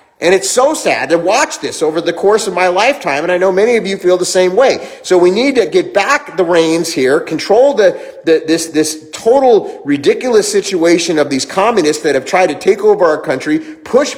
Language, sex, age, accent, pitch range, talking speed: English, male, 30-49, American, 170-260 Hz, 220 wpm